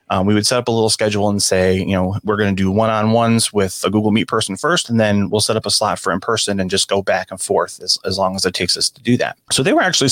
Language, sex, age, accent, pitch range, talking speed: English, male, 30-49, American, 100-125 Hz, 325 wpm